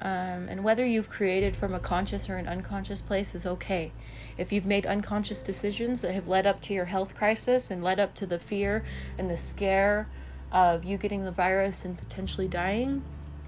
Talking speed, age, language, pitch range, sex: 195 wpm, 20-39, English, 140-215 Hz, female